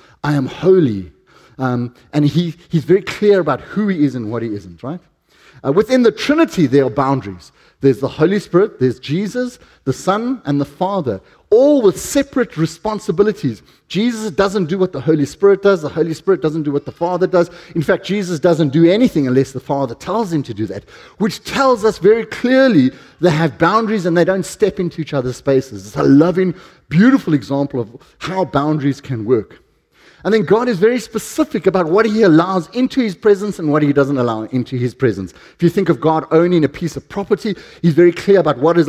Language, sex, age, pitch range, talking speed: English, male, 30-49, 135-195 Hz, 205 wpm